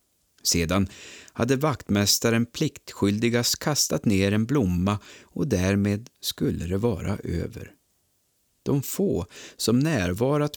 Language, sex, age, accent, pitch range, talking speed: Swedish, male, 50-69, native, 90-120 Hz, 100 wpm